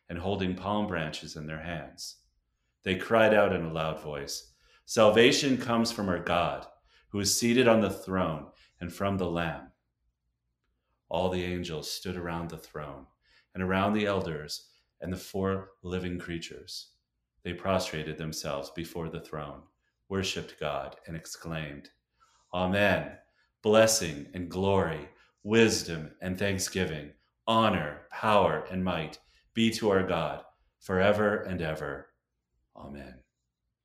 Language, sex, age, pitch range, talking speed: English, male, 40-59, 75-95 Hz, 130 wpm